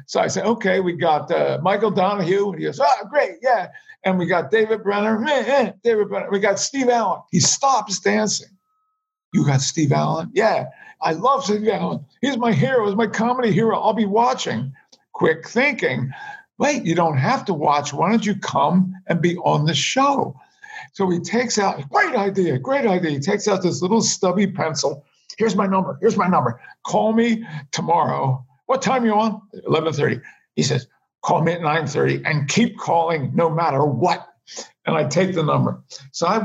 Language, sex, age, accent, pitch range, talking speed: English, male, 50-69, American, 160-220 Hz, 190 wpm